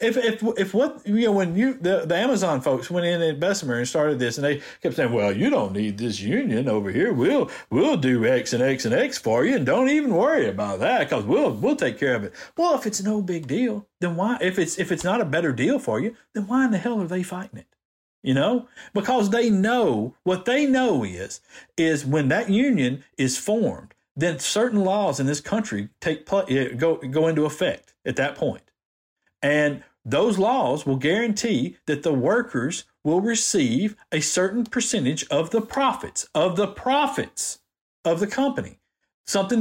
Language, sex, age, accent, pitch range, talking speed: English, male, 50-69, American, 155-230 Hz, 205 wpm